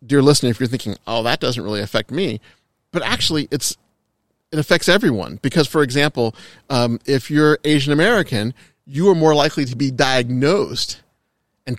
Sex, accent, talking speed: male, American, 170 wpm